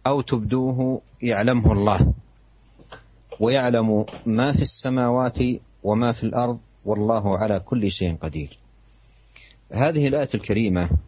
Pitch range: 100-120 Hz